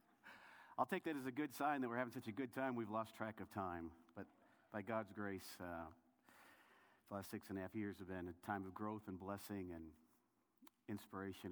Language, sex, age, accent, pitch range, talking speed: English, male, 50-69, American, 95-145 Hz, 215 wpm